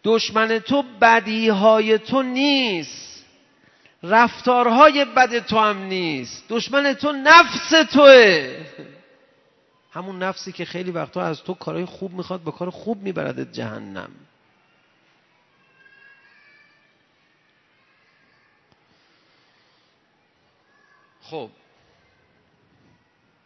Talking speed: 75 wpm